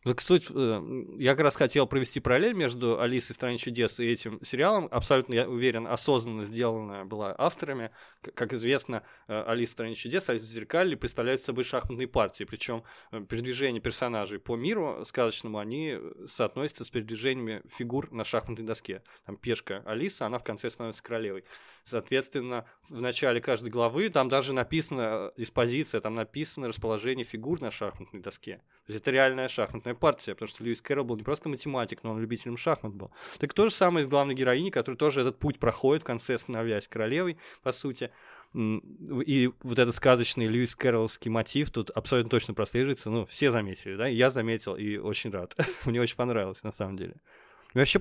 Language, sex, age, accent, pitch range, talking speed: Russian, male, 20-39, native, 115-135 Hz, 175 wpm